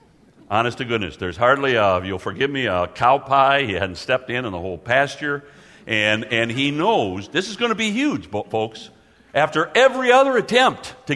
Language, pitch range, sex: English, 110-160 Hz, male